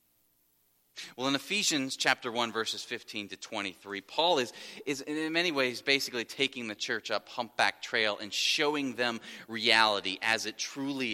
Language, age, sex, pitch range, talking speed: English, 30-49, male, 100-130 Hz, 160 wpm